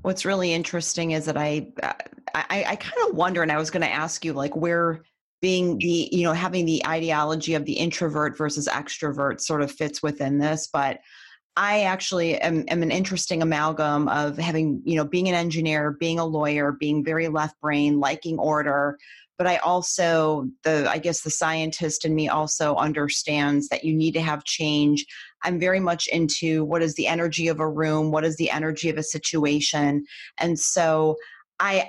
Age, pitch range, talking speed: 30-49, 150-165 Hz, 190 wpm